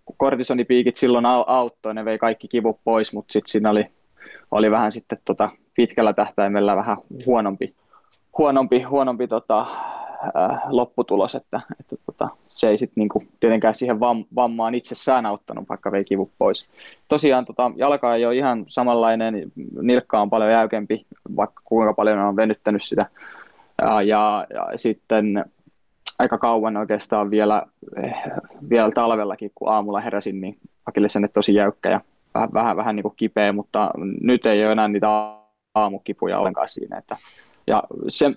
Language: Finnish